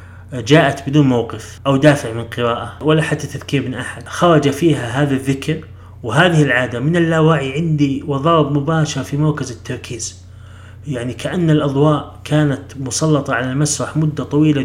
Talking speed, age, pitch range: 145 wpm, 30-49, 125-155 Hz